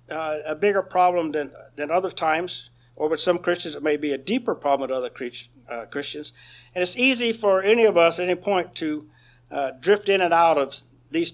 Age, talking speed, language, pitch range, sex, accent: 60-79, 215 wpm, English, 120-180 Hz, male, American